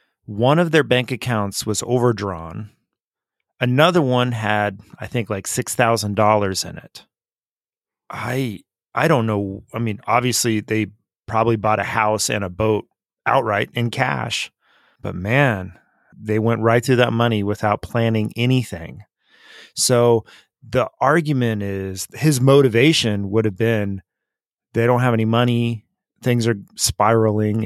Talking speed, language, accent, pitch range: 135 wpm, English, American, 105-125 Hz